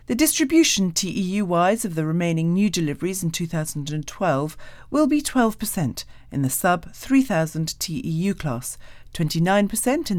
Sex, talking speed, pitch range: female, 120 wpm, 150-230 Hz